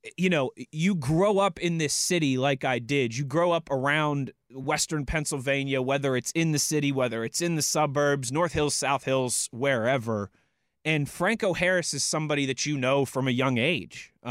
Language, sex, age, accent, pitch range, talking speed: English, male, 20-39, American, 135-155 Hz, 185 wpm